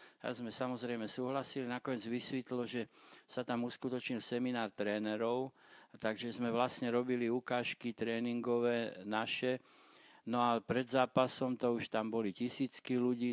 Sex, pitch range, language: male, 110-130 Hz, Slovak